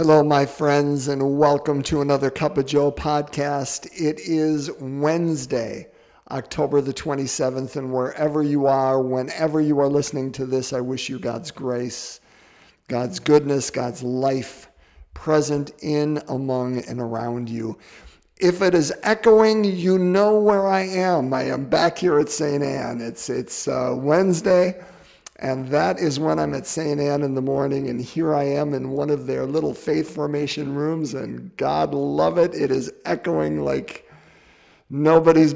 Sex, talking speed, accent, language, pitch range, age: male, 160 wpm, American, English, 130-155 Hz, 50-69